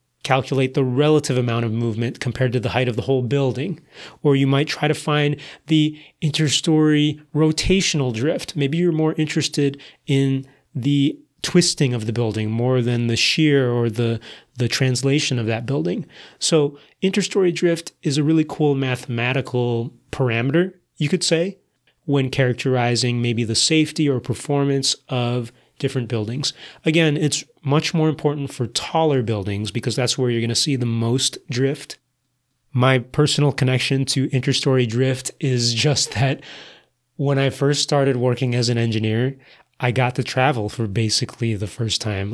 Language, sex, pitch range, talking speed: English, male, 120-145 Hz, 155 wpm